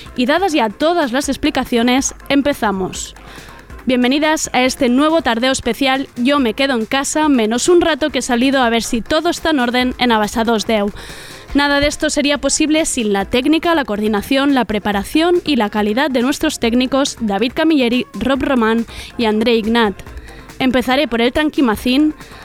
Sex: female